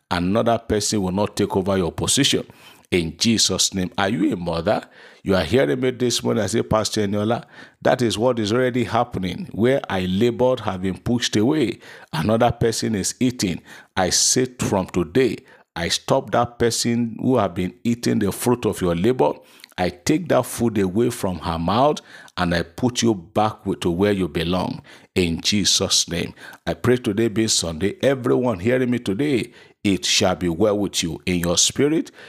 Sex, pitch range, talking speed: male, 90-120 Hz, 180 wpm